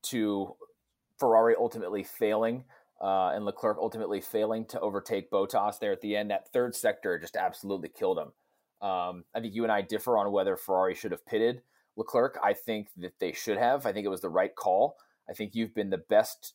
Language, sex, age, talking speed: English, male, 30-49, 205 wpm